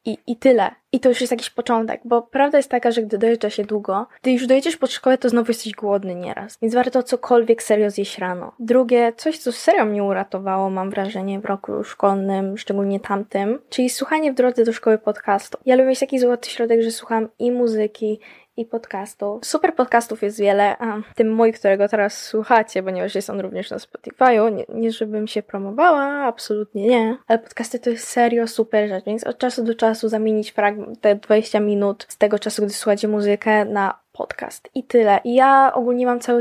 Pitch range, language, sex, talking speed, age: 210-245 Hz, Polish, female, 200 wpm, 10-29